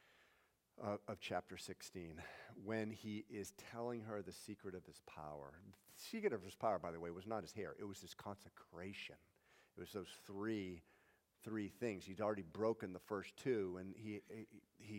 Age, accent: 50-69, American